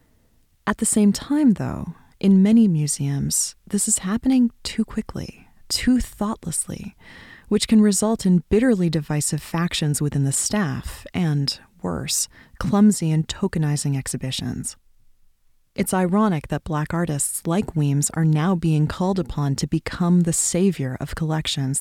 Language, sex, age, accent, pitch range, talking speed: English, female, 30-49, American, 150-195 Hz, 135 wpm